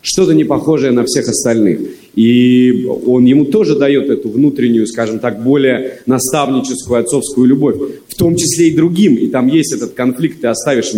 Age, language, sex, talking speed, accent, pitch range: 30-49, Russian, male, 170 wpm, native, 130-160 Hz